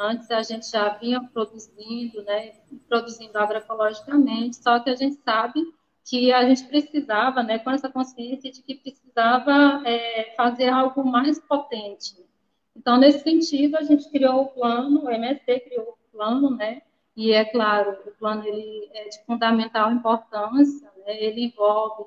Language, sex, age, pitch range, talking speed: Portuguese, female, 20-39, 220-275 Hz, 155 wpm